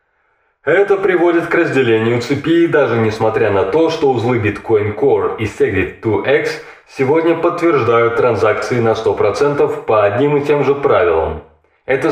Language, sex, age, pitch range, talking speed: Russian, male, 20-39, 110-160 Hz, 135 wpm